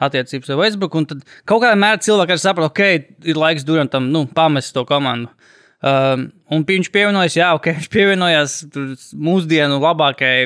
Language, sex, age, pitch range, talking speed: English, male, 20-39, 135-165 Hz, 190 wpm